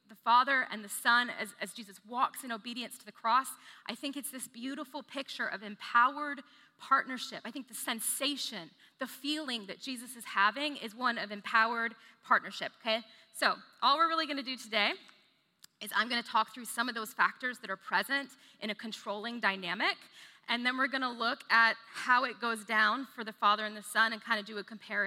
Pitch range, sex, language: 215-260 Hz, female, English